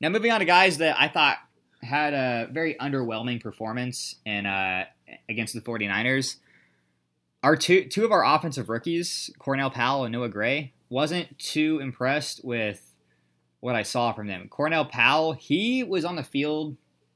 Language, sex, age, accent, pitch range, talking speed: English, male, 20-39, American, 105-140 Hz, 160 wpm